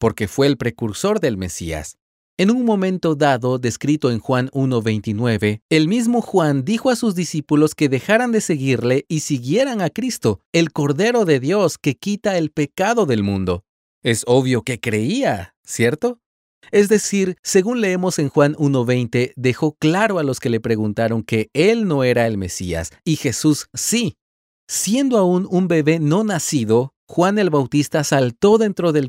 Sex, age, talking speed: male, 40-59, 165 wpm